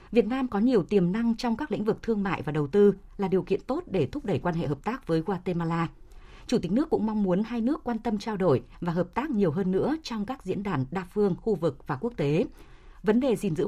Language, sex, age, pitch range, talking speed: Vietnamese, female, 20-39, 175-230 Hz, 270 wpm